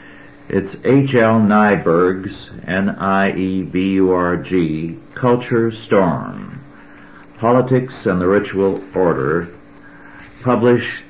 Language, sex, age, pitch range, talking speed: English, male, 60-79, 90-115 Hz, 70 wpm